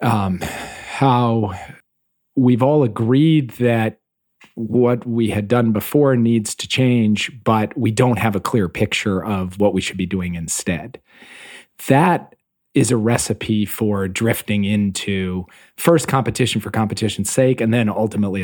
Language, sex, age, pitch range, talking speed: English, male, 40-59, 100-120 Hz, 140 wpm